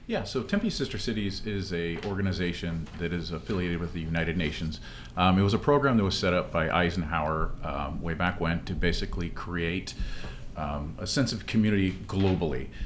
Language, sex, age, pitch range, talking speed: English, male, 40-59, 80-95 Hz, 180 wpm